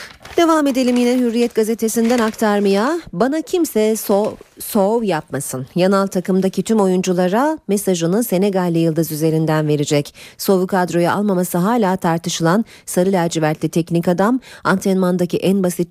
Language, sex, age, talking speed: Turkish, female, 40-59, 120 wpm